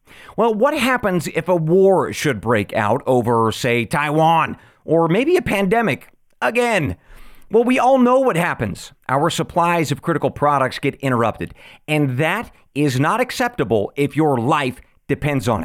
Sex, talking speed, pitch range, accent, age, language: male, 155 wpm, 130-185 Hz, American, 40-59, English